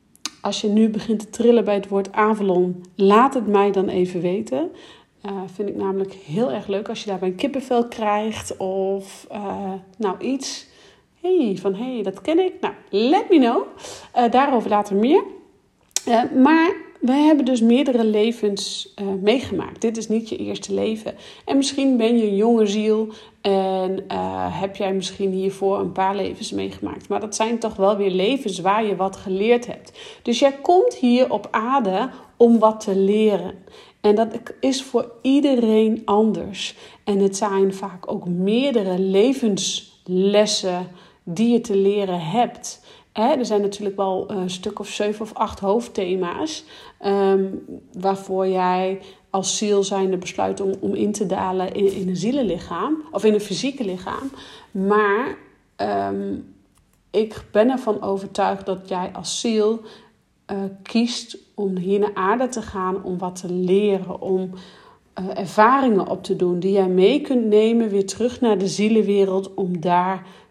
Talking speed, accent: 165 wpm, Dutch